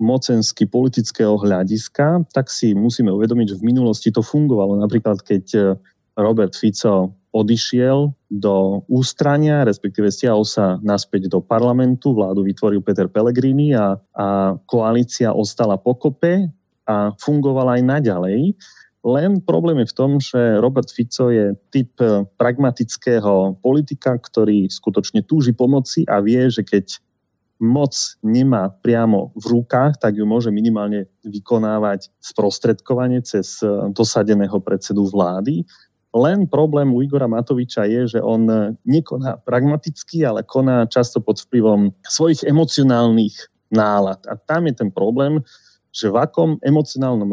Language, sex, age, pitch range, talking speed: Slovak, male, 30-49, 105-130 Hz, 125 wpm